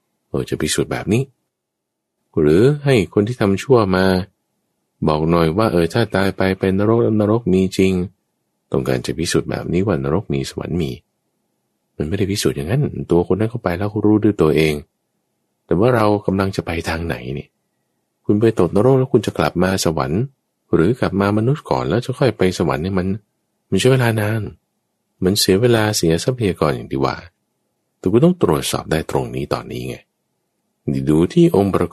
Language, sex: English, male